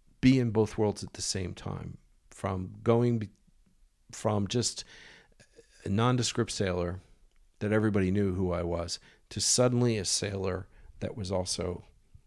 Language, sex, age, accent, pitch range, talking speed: English, male, 50-69, American, 90-115 Hz, 135 wpm